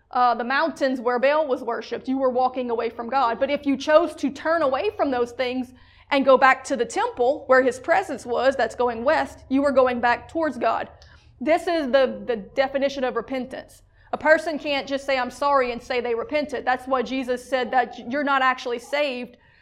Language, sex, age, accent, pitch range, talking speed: English, female, 30-49, American, 245-285 Hz, 210 wpm